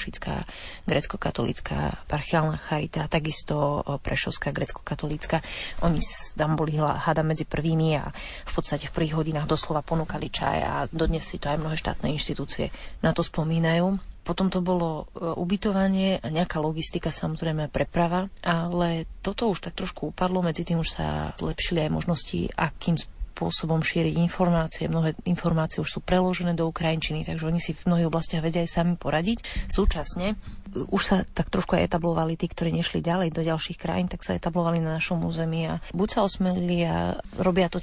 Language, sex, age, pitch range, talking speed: Slovak, female, 30-49, 155-175 Hz, 165 wpm